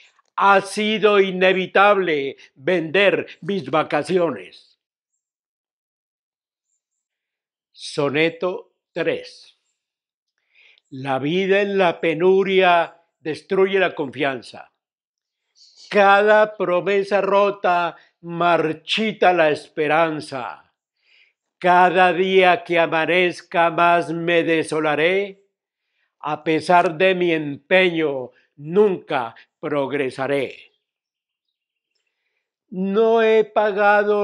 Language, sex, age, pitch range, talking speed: Spanish, male, 60-79, 165-200 Hz, 70 wpm